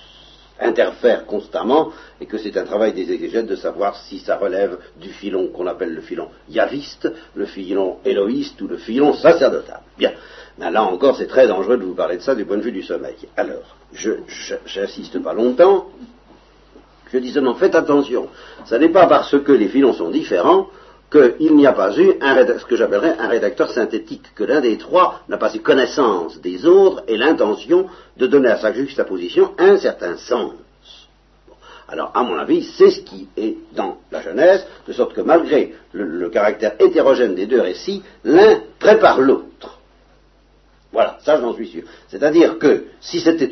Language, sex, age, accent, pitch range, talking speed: French, male, 60-79, French, 335-435 Hz, 180 wpm